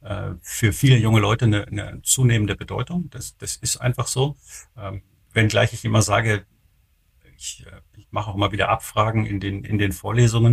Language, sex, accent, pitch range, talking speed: German, male, German, 100-120 Hz, 175 wpm